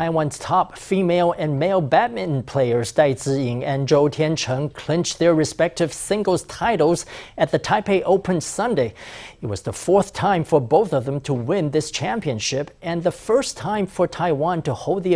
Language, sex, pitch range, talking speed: English, male, 145-180 Hz, 175 wpm